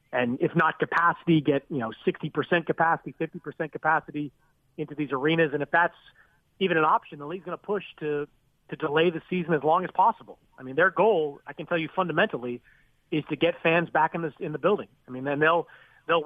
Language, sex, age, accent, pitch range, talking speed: English, male, 40-59, American, 150-175 Hz, 215 wpm